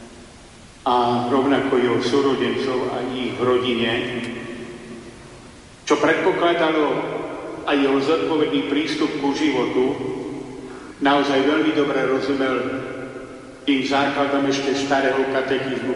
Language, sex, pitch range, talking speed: Slovak, male, 125-140 Hz, 90 wpm